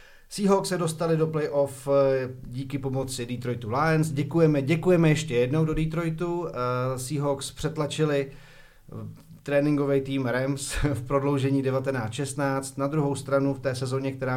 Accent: native